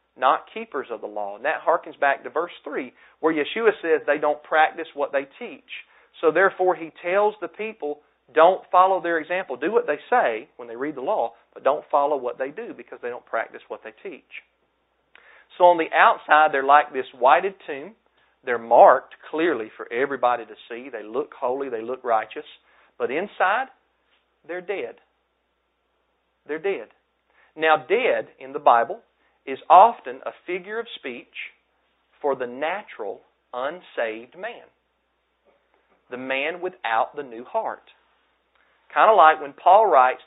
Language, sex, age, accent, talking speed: English, male, 40-59, American, 160 wpm